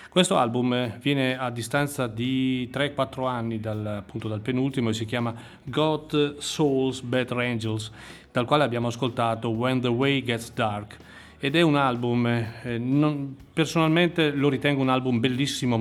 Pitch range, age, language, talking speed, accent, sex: 115-135 Hz, 40-59, Italian, 150 wpm, native, male